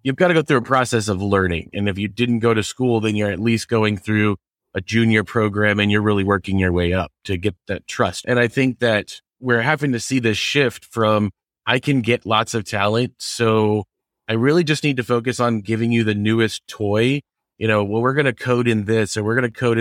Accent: American